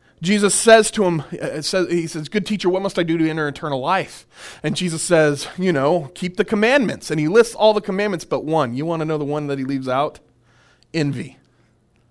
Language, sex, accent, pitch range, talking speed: English, male, American, 120-180 Hz, 215 wpm